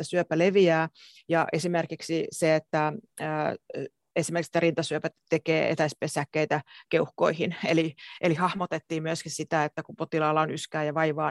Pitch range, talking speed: 155-180 Hz, 115 wpm